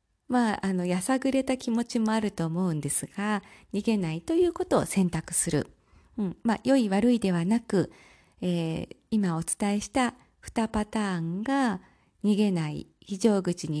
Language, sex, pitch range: Japanese, female, 180-265 Hz